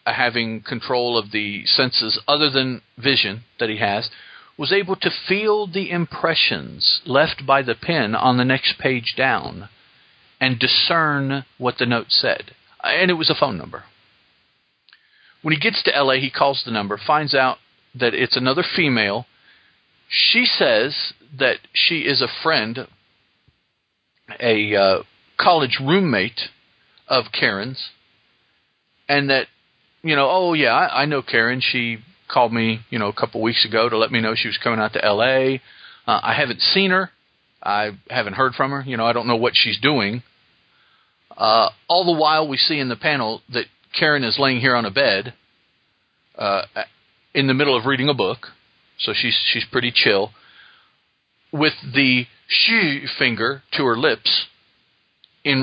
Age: 50-69